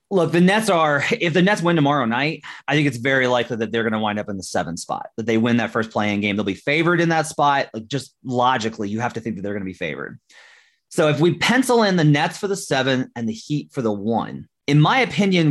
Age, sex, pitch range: 30-49, male, 120-160 Hz